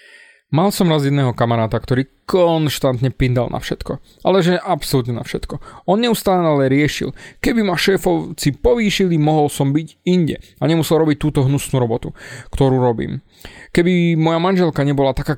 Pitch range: 130-175 Hz